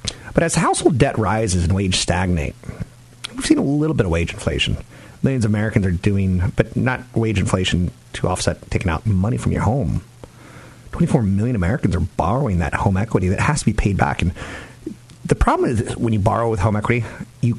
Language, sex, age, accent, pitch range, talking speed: English, male, 40-59, American, 95-120 Hz, 200 wpm